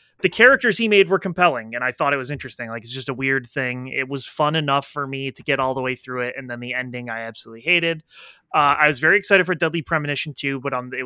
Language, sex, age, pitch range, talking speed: English, male, 20-39, 125-165 Hz, 270 wpm